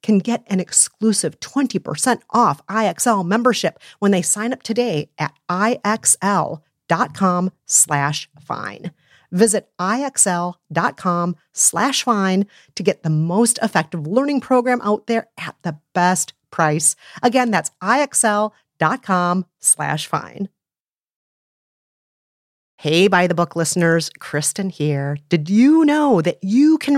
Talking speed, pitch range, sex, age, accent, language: 115 wpm, 165-245 Hz, female, 40-59, American, English